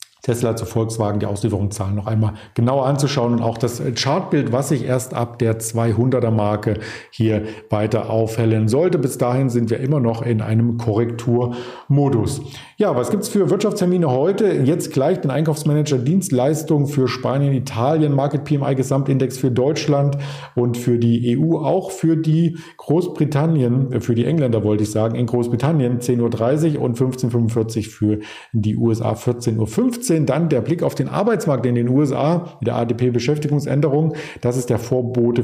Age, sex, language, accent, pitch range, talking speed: 50-69, male, German, German, 115-145 Hz, 160 wpm